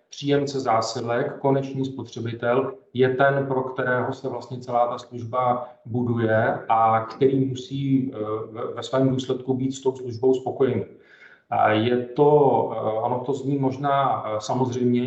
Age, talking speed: 40-59, 125 wpm